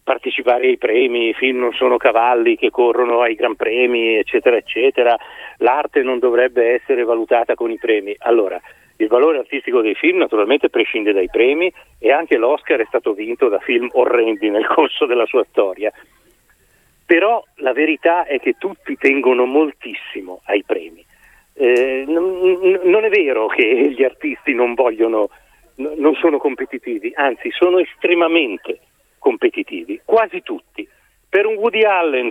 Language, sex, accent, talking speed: Italian, male, native, 145 wpm